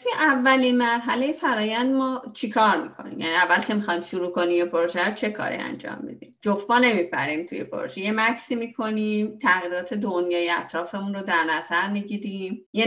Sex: female